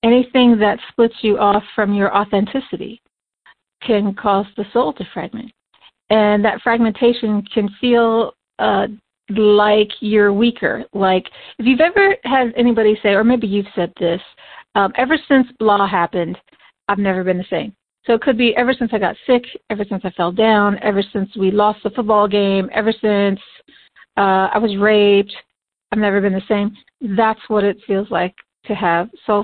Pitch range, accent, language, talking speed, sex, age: 195-230 Hz, American, English, 175 wpm, female, 40-59